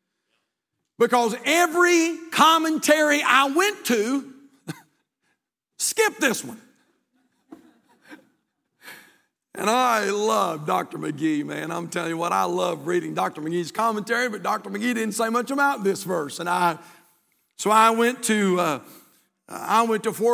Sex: male